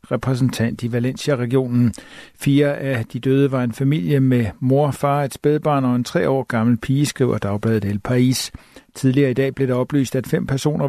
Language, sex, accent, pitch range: Danish, male, native, 120-145 Hz